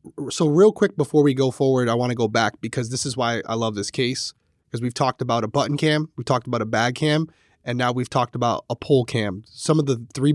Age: 20-39